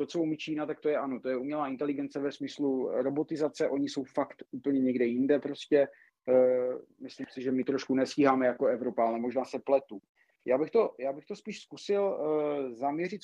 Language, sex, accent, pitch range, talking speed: Czech, male, native, 135-155 Hz, 185 wpm